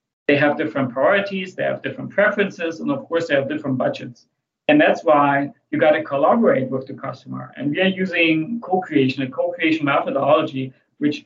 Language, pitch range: English, 150-210 Hz